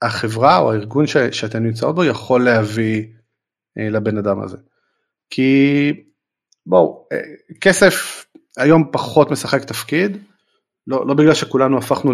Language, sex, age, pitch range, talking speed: Hebrew, male, 30-49, 115-140 Hz, 130 wpm